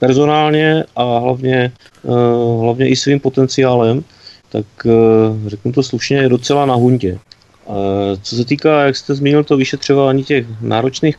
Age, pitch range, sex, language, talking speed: 30-49, 105-125 Hz, male, Czech, 150 wpm